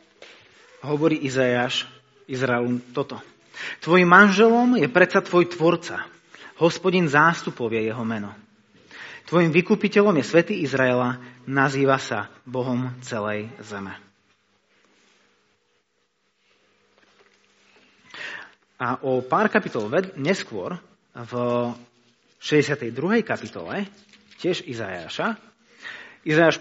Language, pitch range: Slovak, 125-190 Hz